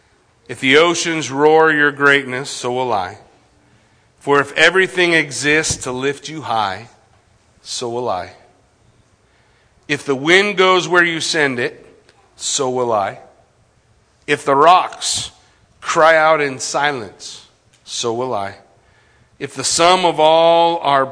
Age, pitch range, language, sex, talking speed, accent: 40-59, 115-145 Hz, English, male, 135 wpm, American